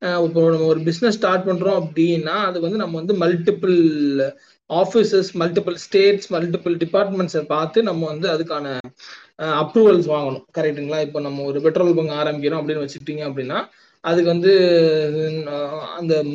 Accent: native